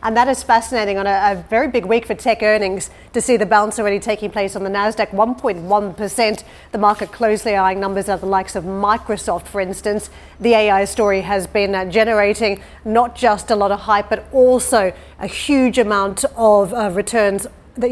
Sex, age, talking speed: female, 40-59, 190 wpm